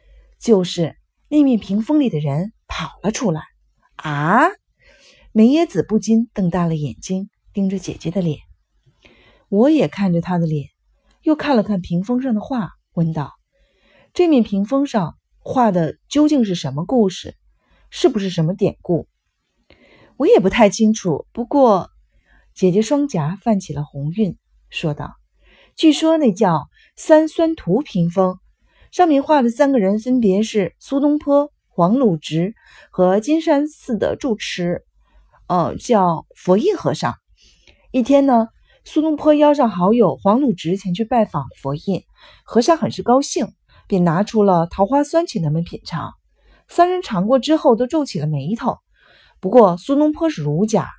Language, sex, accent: Chinese, female, native